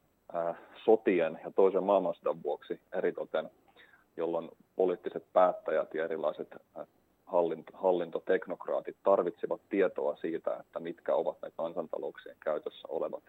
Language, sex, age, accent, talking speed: Finnish, male, 30-49, native, 100 wpm